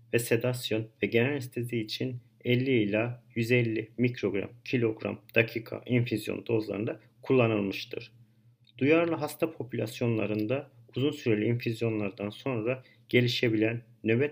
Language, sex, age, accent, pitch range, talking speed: Turkish, male, 50-69, native, 110-125 Hz, 100 wpm